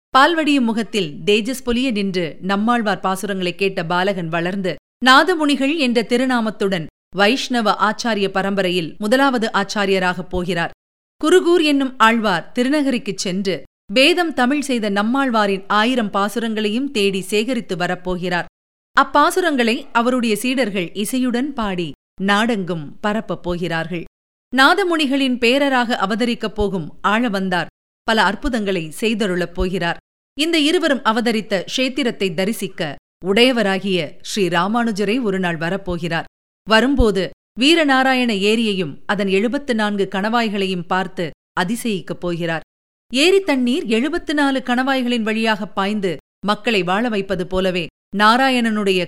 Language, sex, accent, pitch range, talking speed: Tamil, female, native, 190-245 Hz, 100 wpm